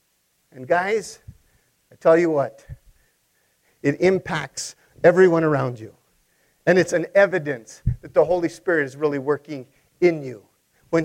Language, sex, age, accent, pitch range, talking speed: English, male, 50-69, American, 185-295 Hz, 135 wpm